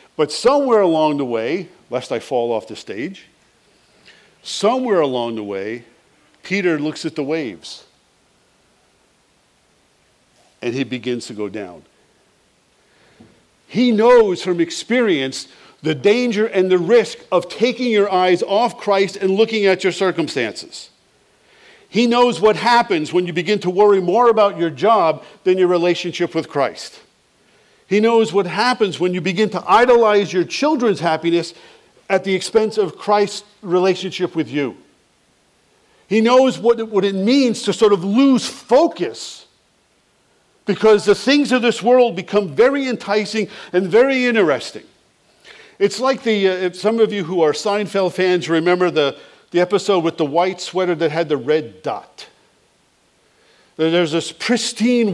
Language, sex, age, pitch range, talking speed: English, male, 50-69, 170-220 Hz, 145 wpm